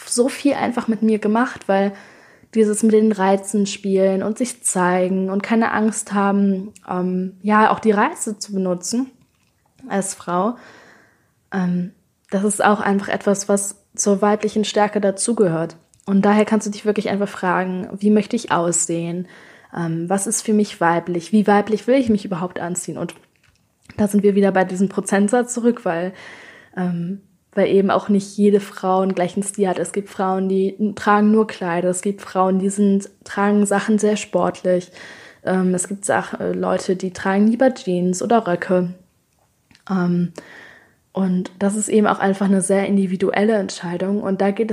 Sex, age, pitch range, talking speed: female, 20-39, 185-215 Hz, 170 wpm